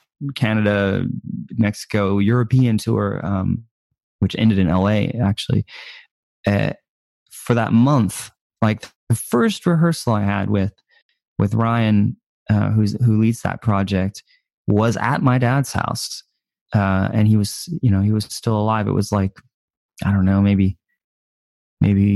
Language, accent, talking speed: English, American, 140 wpm